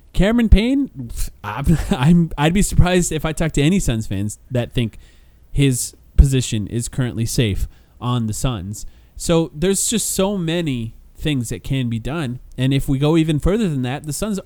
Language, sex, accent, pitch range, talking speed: English, male, American, 115-160 Hz, 180 wpm